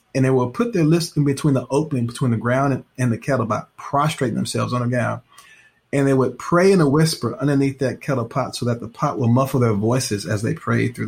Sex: male